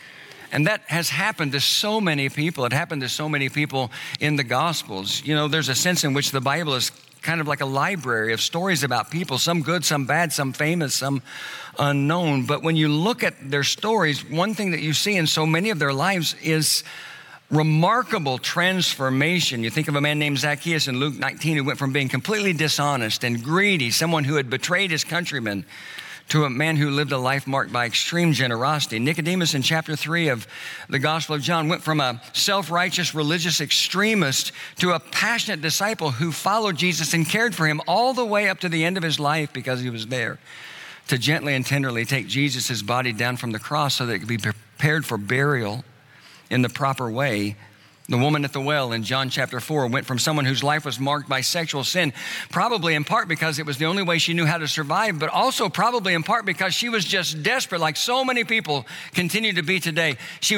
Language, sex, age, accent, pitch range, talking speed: English, male, 50-69, American, 135-170 Hz, 215 wpm